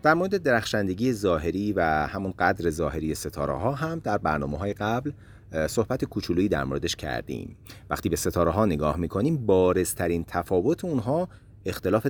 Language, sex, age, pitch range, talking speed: Persian, male, 30-49, 80-125 Hz, 150 wpm